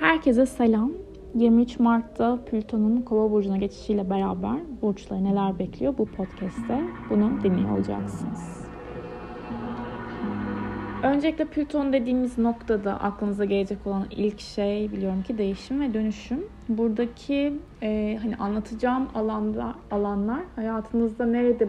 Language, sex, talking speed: Turkish, female, 105 wpm